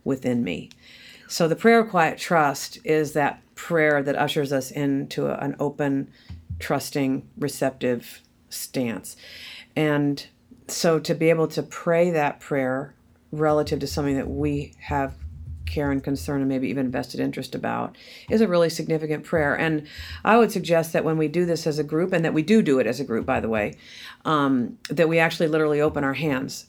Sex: female